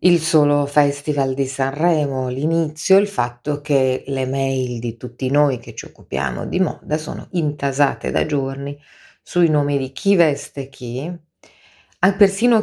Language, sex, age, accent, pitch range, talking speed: Italian, female, 40-59, native, 125-150 Hz, 145 wpm